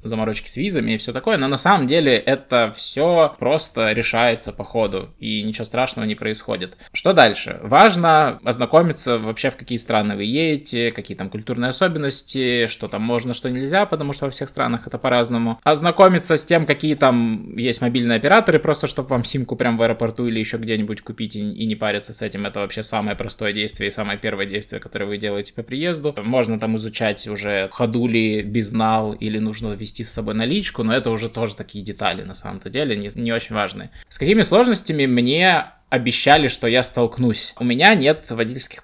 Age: 20-39